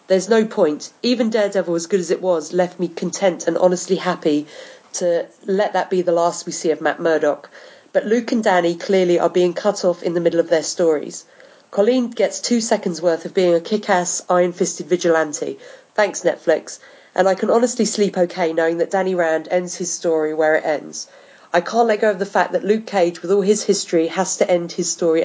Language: English